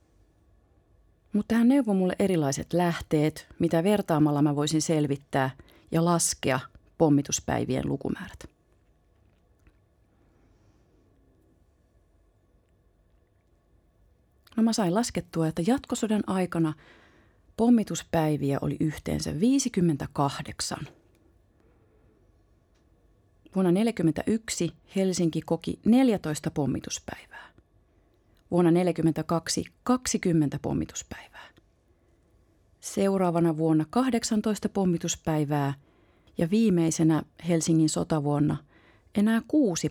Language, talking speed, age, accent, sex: Finnish, 70 wpm, 30-49, native, female